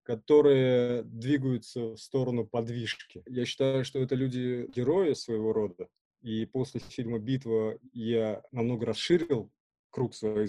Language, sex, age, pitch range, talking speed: Russian, male, 20-39, 115-135 Hz, 120 wpm